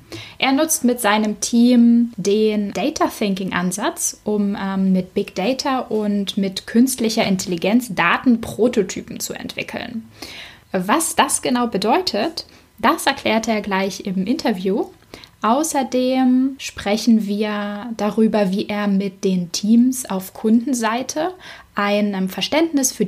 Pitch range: 195-250 Hz